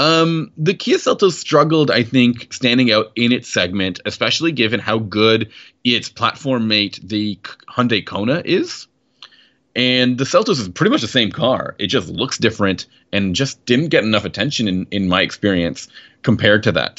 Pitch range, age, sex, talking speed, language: 95-130 Hz, 30-49, male, 175 wpm, English